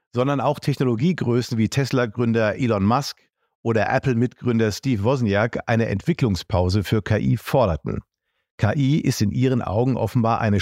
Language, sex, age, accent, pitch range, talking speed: German, male, 50-69, German, 105-135 Hz, 130 wpm